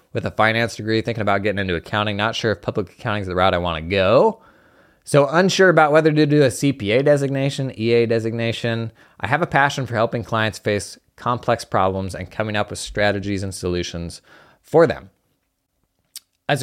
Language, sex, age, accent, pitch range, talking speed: English, male, 20-39, American, 100-145 Hz, 190 wpm